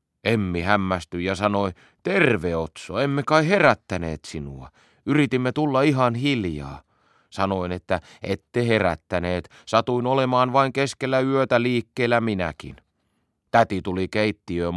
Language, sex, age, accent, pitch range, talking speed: Finnish, male, 30-49, native, 95-130 Hz, 115 wpm